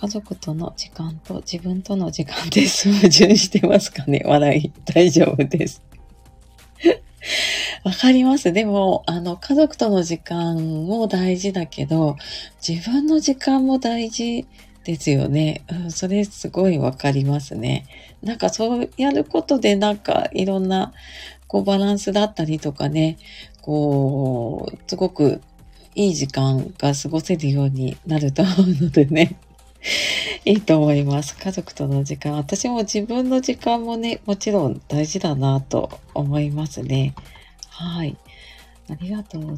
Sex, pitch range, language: female, 150-205 Hz, Japanese